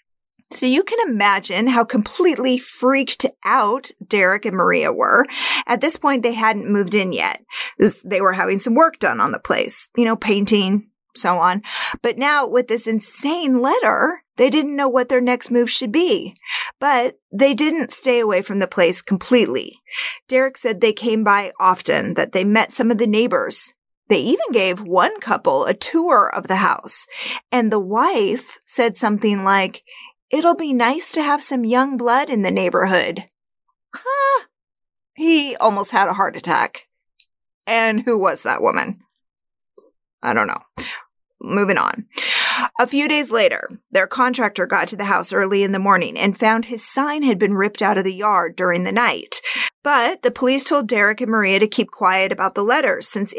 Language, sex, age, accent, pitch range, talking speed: English, female, 30-49, American, 205-275 Hz, 175 wpm